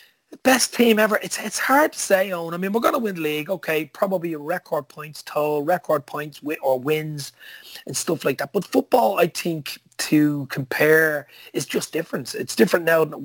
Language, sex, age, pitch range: English, male, 30-49, 135-180 Hz